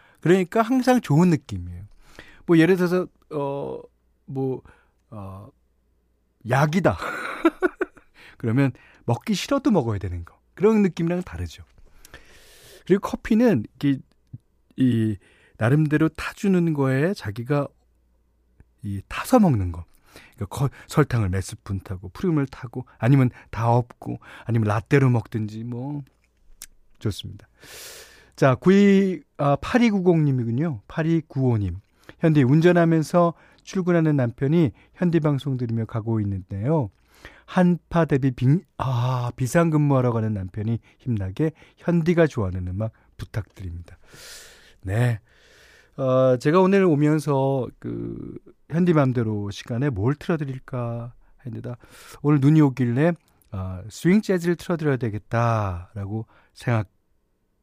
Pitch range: 110-165 Hz